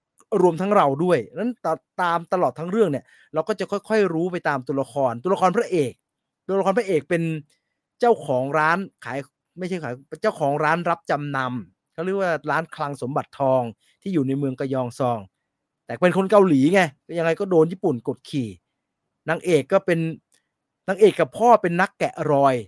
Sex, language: male, English